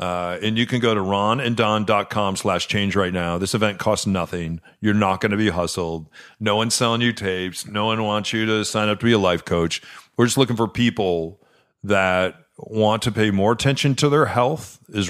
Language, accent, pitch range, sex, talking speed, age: English, American, 95-115 Hz, male, 220 wpm, 40-59